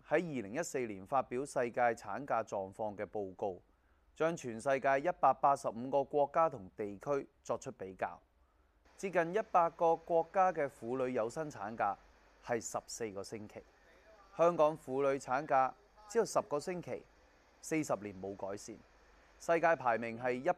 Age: 30-49